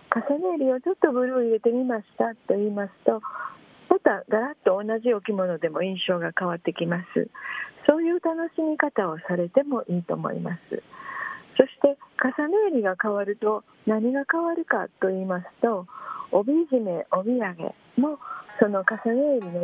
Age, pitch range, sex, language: 40-59, 185-280 Hz, female, Japanese